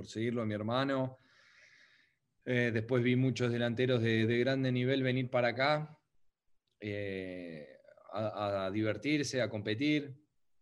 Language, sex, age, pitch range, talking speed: English, male, 20-39, 110-135 Hz, 130 wpm